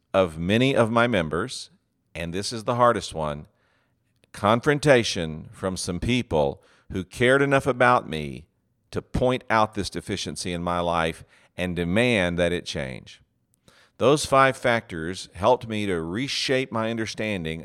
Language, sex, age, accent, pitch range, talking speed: English, male, 50-69, American, 85-115 Hz, 145 wpm